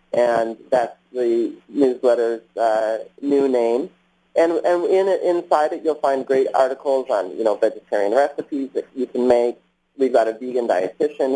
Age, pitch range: 30-49, 105-135 Hz